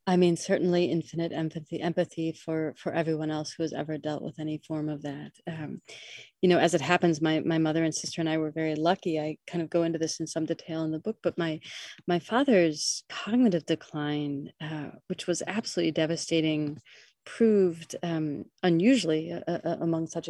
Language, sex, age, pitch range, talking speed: English, female, 30-49, 155-175 Hz, 190 wpm